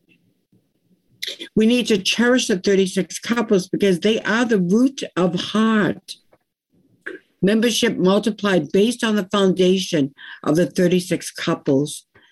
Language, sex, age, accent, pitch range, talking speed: English, female, 60-79, American, 180-230 Hz, 115 wpm